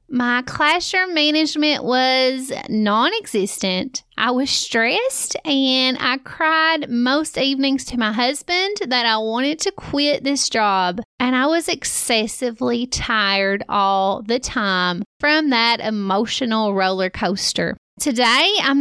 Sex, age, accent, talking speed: female, 30-49, American, 120 wpm